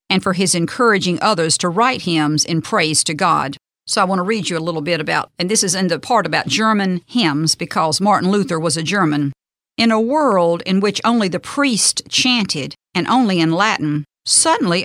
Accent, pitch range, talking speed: American, 165-225 Hz, 205 wpm